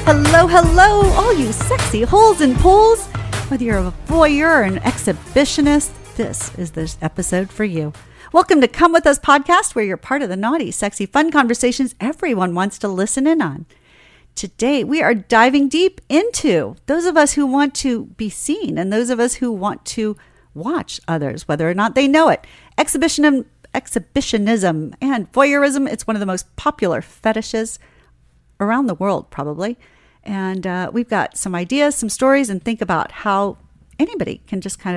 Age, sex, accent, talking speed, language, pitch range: 50-69, female, American, 175 wpm, English, 190-290 Hz